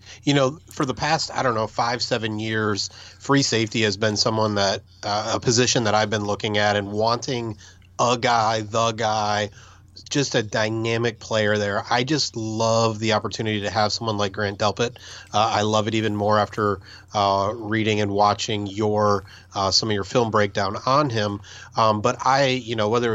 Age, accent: 30-49, American